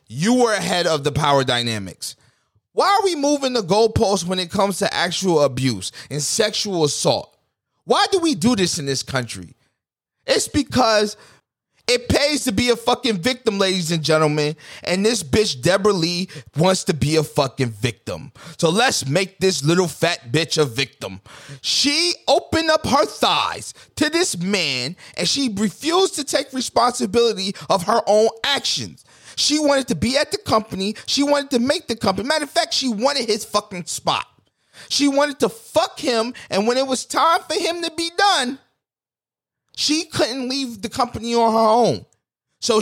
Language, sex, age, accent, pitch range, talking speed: English, male, 30-49, American, 165-255 Hz, 175 wpm